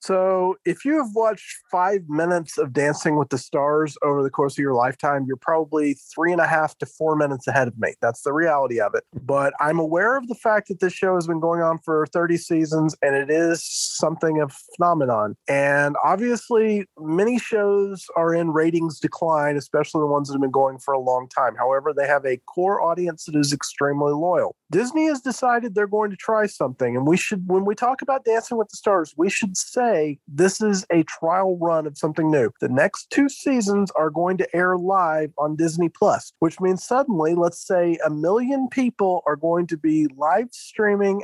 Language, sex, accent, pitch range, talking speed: English, male, American, 150-190 Hz, 205 wpm